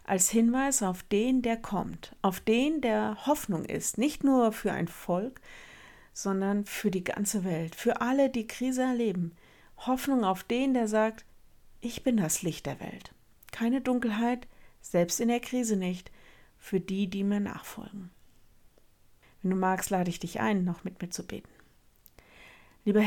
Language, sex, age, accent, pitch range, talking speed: German, female, 50-69, German, 185-220 Hz, 160 wpm